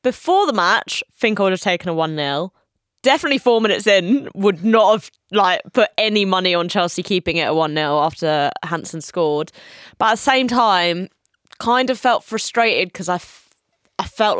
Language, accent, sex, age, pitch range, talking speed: English, British, female, 20-39, 165-215 Hz, 180 wpm